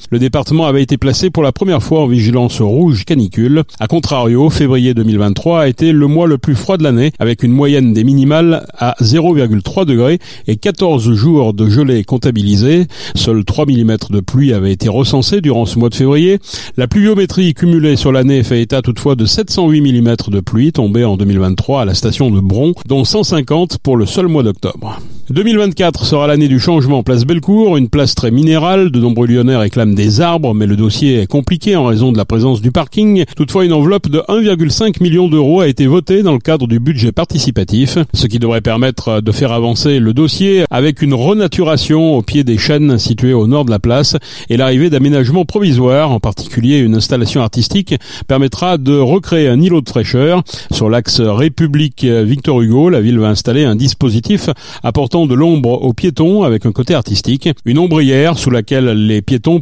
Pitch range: 120-160 Hz